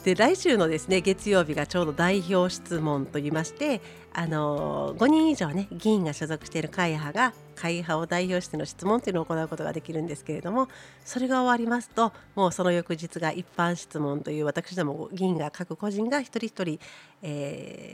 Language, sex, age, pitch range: Japanese, female, 40-59, 160-230 Hz